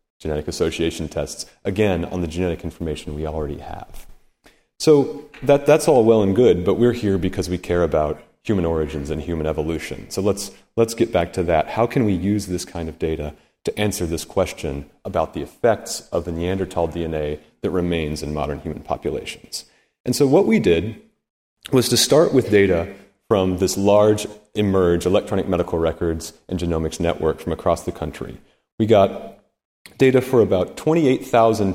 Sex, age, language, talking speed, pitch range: male, 30-49, English, 175 wpm, 85-110 Hz